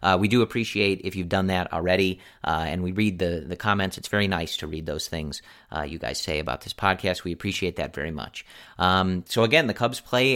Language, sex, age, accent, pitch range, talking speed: English, male, 30-49, American, 95-120 Hz, 240 wpm